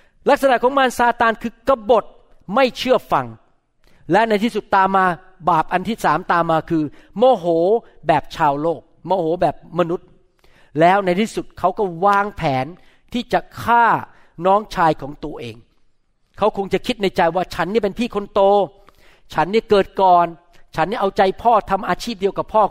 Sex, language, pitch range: male, Thai, 155-205 Hz